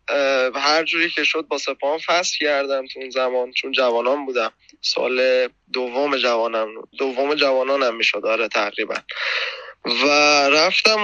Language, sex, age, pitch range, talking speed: Persian, male, 20-39, 135-170 Hz, 130 wpm